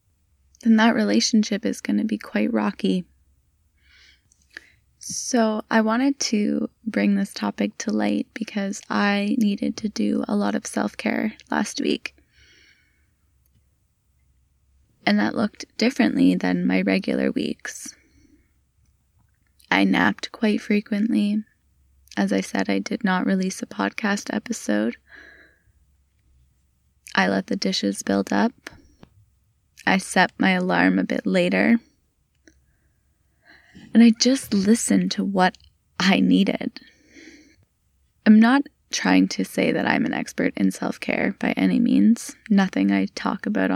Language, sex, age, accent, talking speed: English, female, 20-39, American, 125 wpm